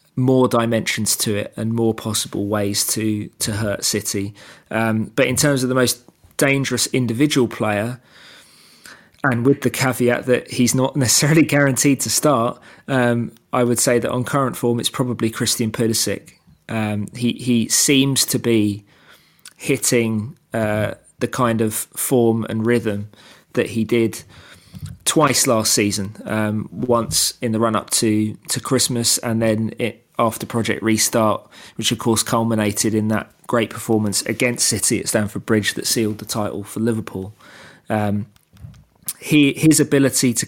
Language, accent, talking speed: English, British, 155 wpm